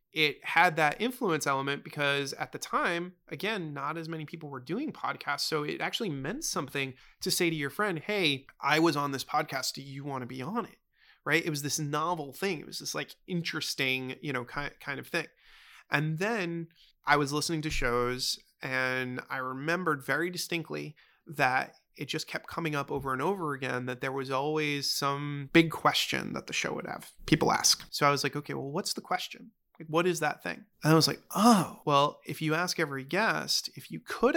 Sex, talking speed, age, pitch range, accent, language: male, 210 wpm, 30-49, 140-170 Hz, American, English